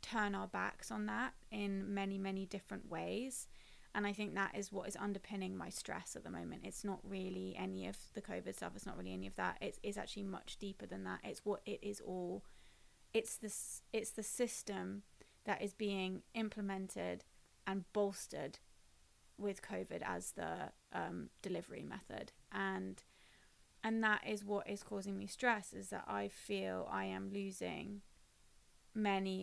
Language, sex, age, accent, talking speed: English, female, 20-39, British, 170 wpm